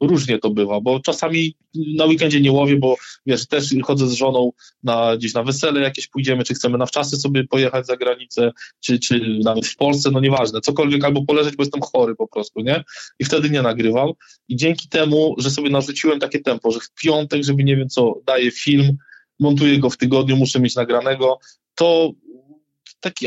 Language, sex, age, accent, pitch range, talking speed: Polish, male, 20-39, native, 130-150 Hz, 195 wpm